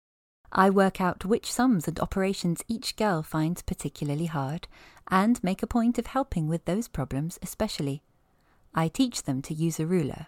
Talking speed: 170 wpm